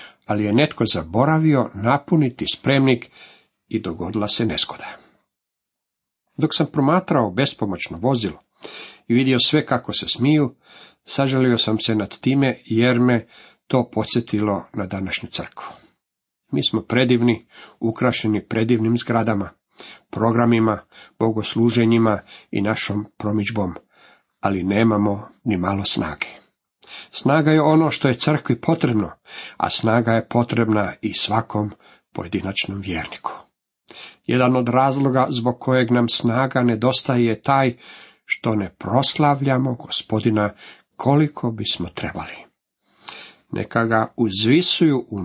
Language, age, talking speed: Croatian, 50-69, 115 wpm